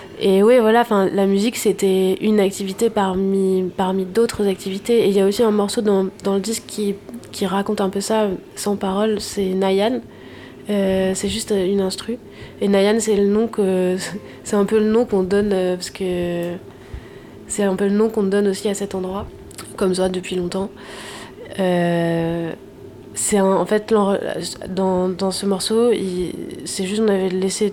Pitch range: 185-205 Hz